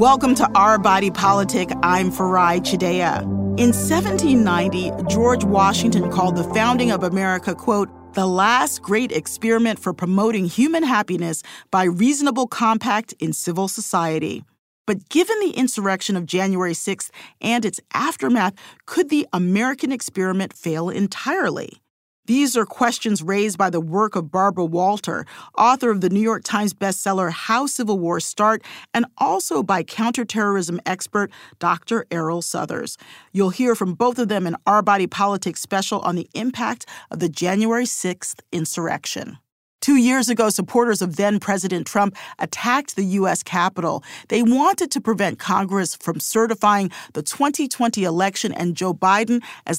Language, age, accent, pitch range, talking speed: English, 40-59, American, 185-235 Hz, 145 wpm